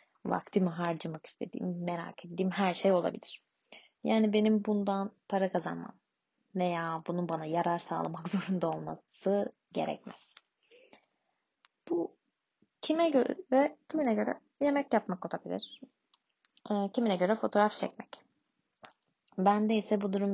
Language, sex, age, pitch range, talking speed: Turkish, female, 20-39, 185-230 Hz, 110 wpm